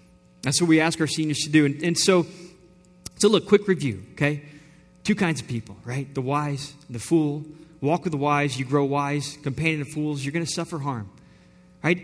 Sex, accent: male, American